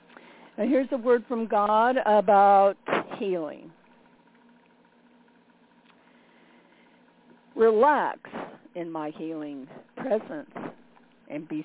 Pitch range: 190-245 Hz